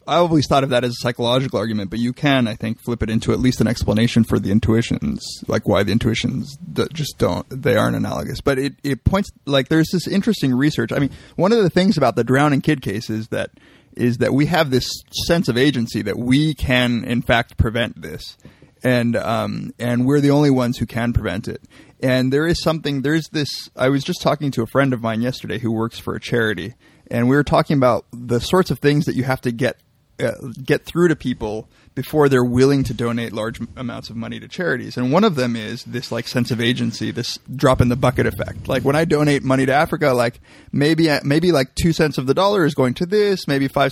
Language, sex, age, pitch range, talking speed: English, male, 30-49, 115-145 Hz, 230 wpm